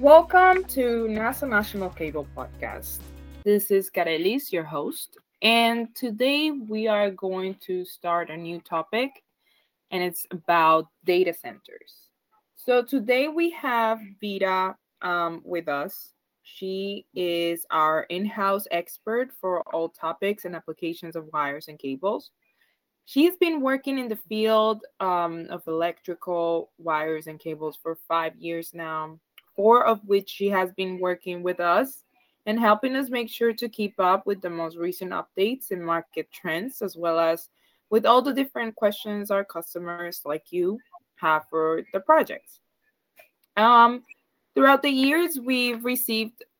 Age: 20-39